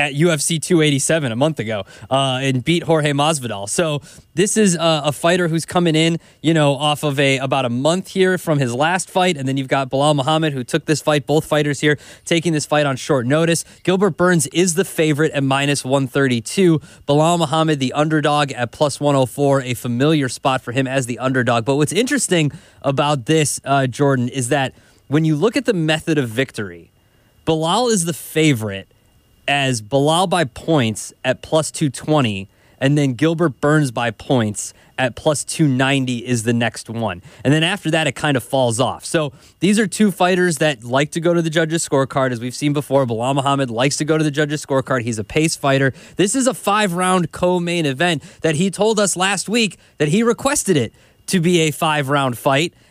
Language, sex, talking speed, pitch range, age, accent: English, male, 200 wpm, 135-165 Hz, 20-39, American